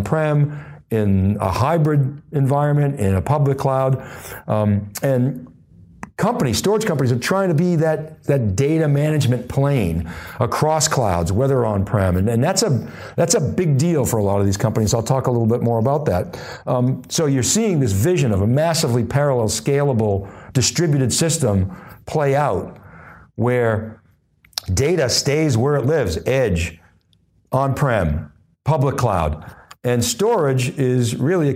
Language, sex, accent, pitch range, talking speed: English, male, American, 105-145 Hz, 150 wpm